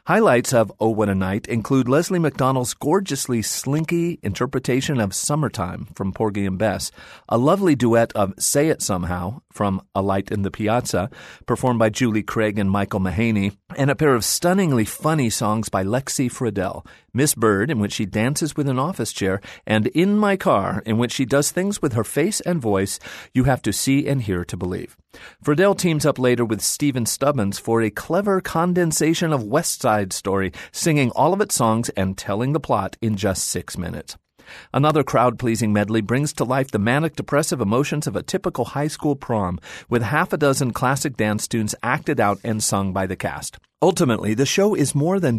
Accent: American